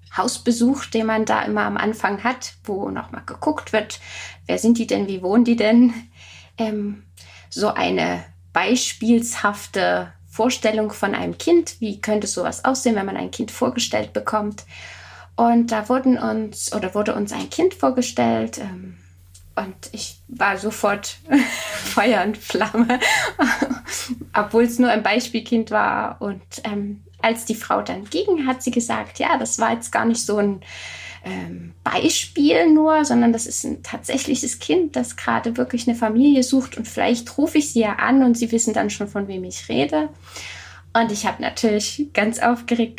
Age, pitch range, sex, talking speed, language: 20-39, 175-245 Hz, female, 165 wpm, German